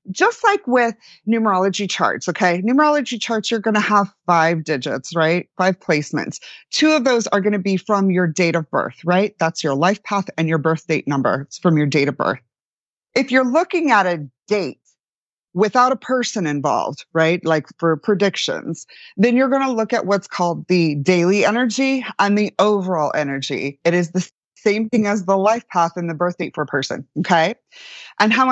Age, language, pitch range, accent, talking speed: 30-49, English, 160-220 Hz, American, 195 wpm